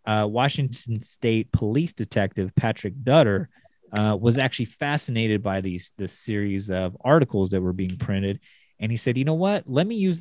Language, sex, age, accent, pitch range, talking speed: English, male, 30-49, American, 100-125 Hz, 175 wpm